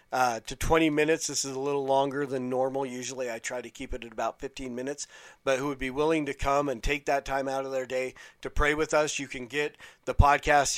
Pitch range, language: 125-140 Hz, English